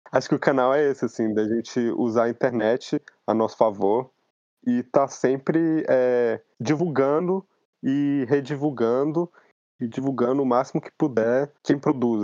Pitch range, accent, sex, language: 110-135 Hz, Brazilian, male, Portuguese